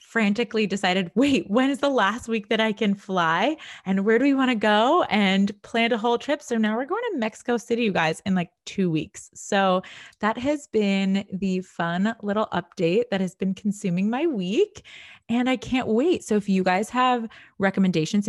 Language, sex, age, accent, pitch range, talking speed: English, female, 20-39, American, 165-220 Hz, 200 wpm